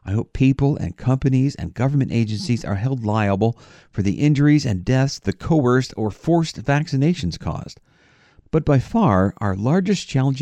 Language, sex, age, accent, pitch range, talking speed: English, male, 50-69, American, 100-145 Hz, 160 wpm